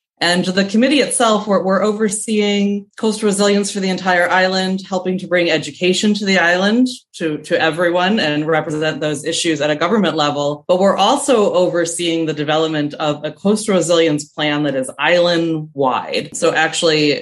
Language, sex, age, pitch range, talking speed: English, female, 20-39, 145-185 Hz, 165 wpm